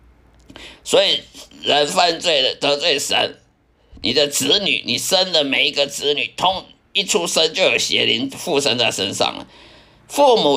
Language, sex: Chinese, male